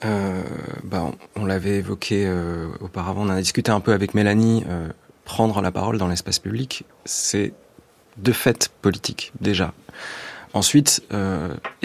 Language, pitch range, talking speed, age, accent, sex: French, 95-115 Hz, 150 wpm, 30-49, French, male